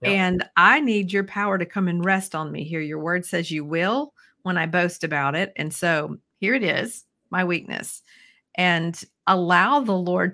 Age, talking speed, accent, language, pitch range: 50-69, 190 wpm, American, English, 170-210 Hz